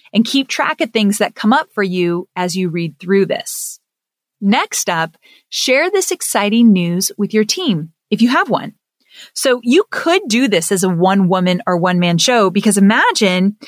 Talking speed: 190 wpm